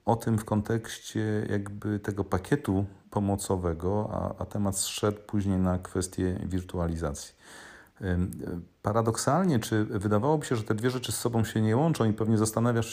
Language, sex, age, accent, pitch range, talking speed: Polish, male, 40-59, native, 90-105 Hz, 155 wpm